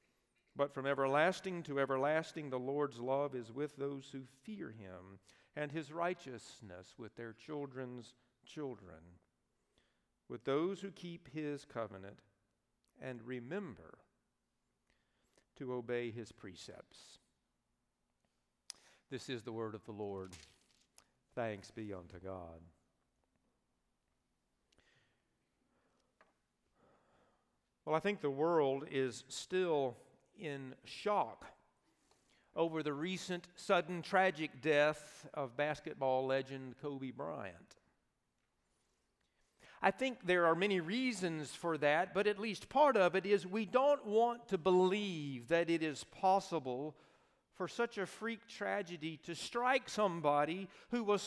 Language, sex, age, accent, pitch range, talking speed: English, male, 50-69, American, 120-185 Hz, 115 wpm